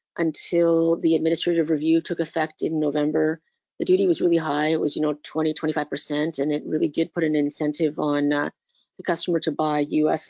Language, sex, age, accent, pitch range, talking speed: English, female, 40-59, American, 160-190 Hz, 200 wpm